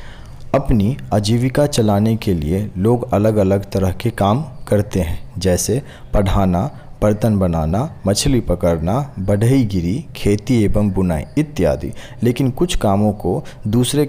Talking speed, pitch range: 125 wpm, 100-125 Hz